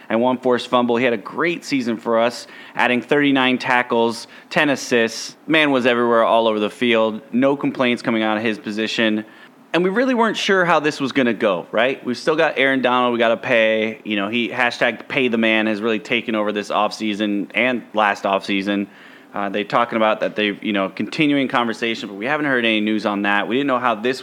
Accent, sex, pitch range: American, male, 110-135 Hz